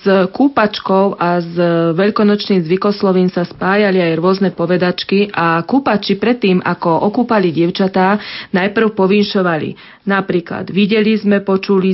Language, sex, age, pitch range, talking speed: Slovak, female, 40-59, 180-240 Hz, 115 wpm